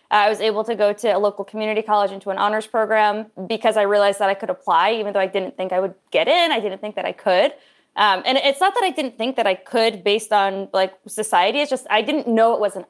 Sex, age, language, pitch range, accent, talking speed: female, 20-39, English, 195-225 Hz, American, 275 wpm